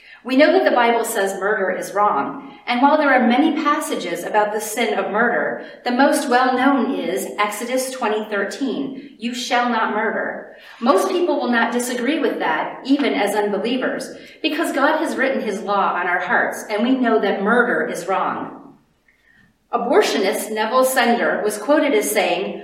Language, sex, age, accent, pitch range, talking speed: English, female, 40-59, American, 205-280 Hz, 165 wpm